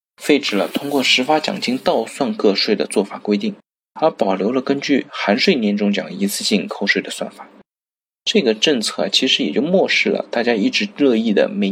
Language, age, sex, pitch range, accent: Chinese, 20-39, male, 110-180 Hz, native